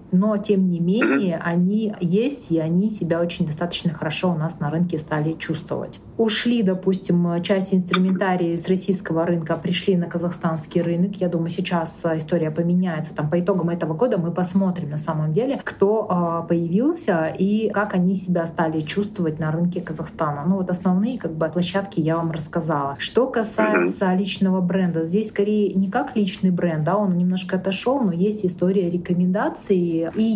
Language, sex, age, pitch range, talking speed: Russian, female, 30-49, 165-195 Hz, 165 wpm